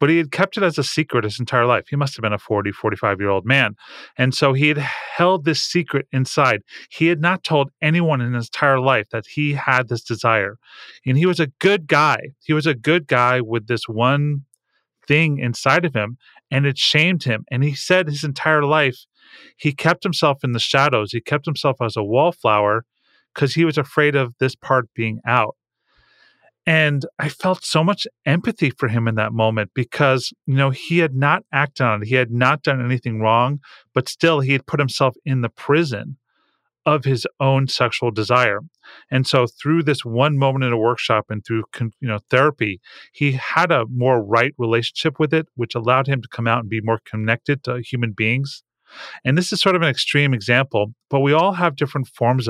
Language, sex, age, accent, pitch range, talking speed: English, male, 30-49, American, 120-150 Hz, 205 wpm